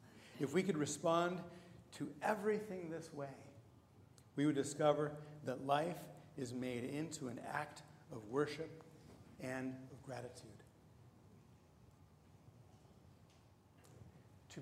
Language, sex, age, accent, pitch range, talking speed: English, male, 50-69, American, 120-155 Hz, 100 wpm